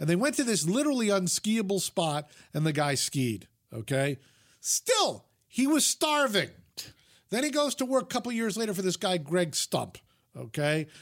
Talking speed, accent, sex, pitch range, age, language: 175 wpm, American, male, 165-255 Hz, 50-69, English